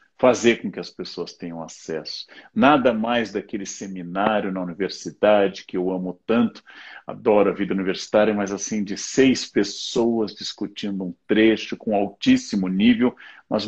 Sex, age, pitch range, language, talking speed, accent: male, 50-69, 95-130 Hz, Portuguese, 145 wpm, Brazilian